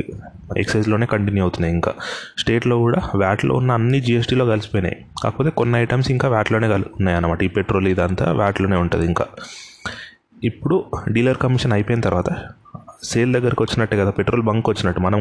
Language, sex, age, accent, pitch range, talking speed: Telugu, male, 30-49, native, 100-120 Hz, 145 wpm